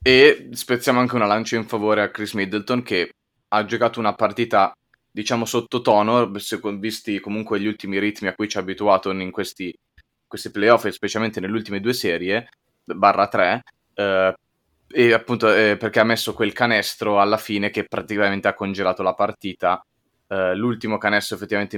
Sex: male